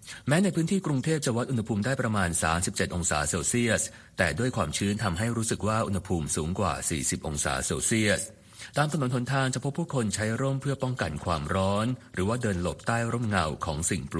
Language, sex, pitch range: Thai, male, 85-120 Hz